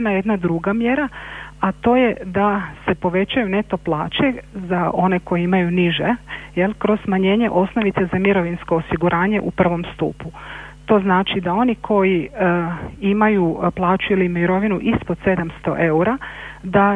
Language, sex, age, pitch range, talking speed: Croatian, female, 40-59, 170-200 Hz, 145 wpm